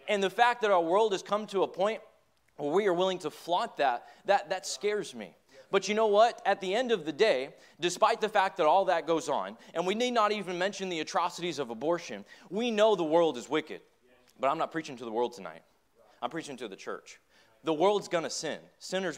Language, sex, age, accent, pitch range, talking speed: English, male, 20-39, American, 130-190 Hz, 235 wpm